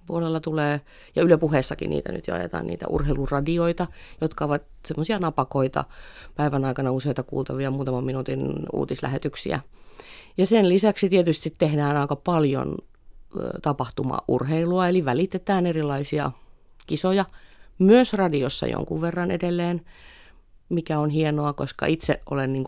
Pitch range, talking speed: 135-165 Hz, 115 wpm